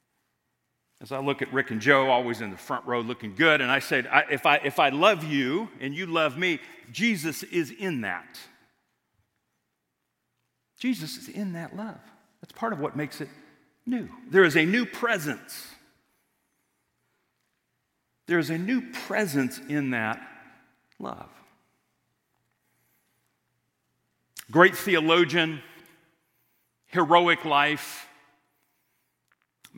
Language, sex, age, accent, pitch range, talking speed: English, male, 40-59, American, 130-175 Hz, 125 wpm